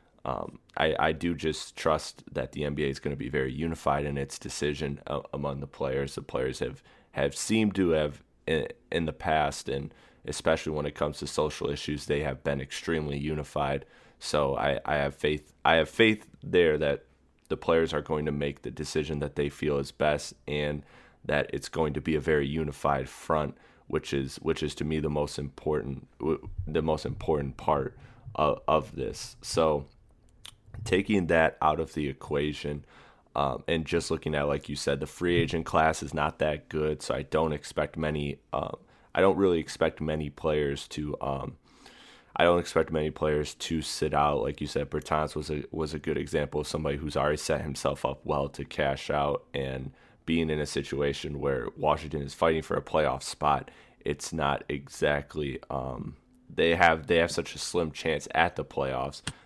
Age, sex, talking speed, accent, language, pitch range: 20-39, male, 190 wpm, American, English, 70-80 Hz